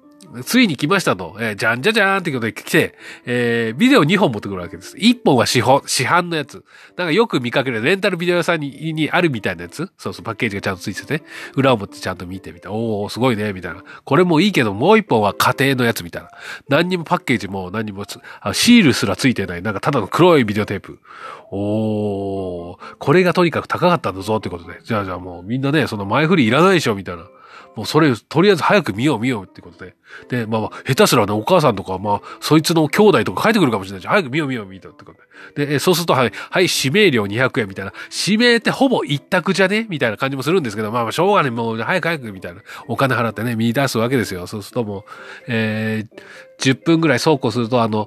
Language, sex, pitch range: Japanese, male, 105-170 Hz